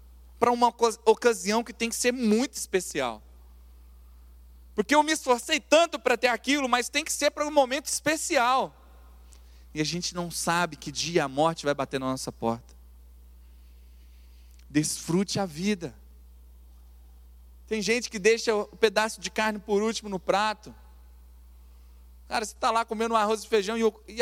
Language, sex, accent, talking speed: Portuguese, male, Brazilian, 155 wpm